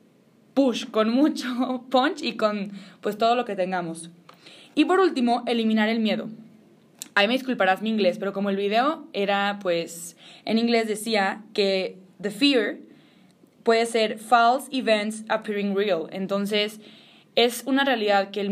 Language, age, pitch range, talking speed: English, 20-39, 205-245 Hz, 150 wpm